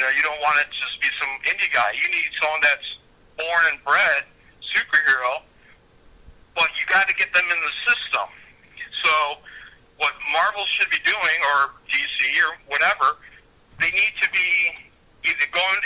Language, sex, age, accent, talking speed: English, male, 50-69, American, 170 wpm